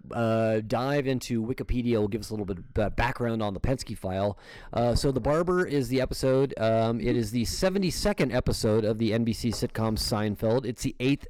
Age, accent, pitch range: 30-49, American, 105-140 Hz